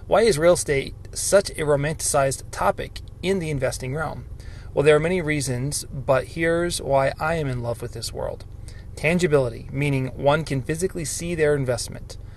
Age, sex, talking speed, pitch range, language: 20-39, male, 170 wpm, 115-150 Hz, English